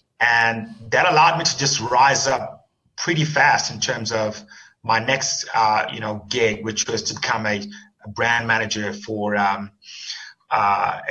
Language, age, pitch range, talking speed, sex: English, 30-49, 105-120 Hz, 160 wpm, male